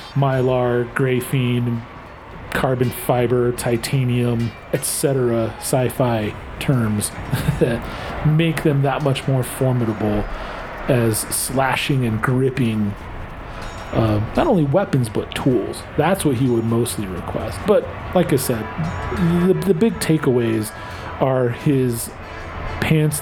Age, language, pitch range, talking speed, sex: 40-59, English, 115-140 Hz, 110 wpm, male